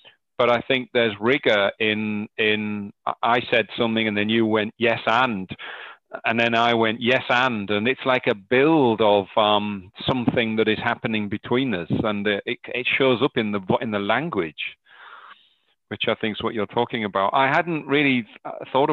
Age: 40-59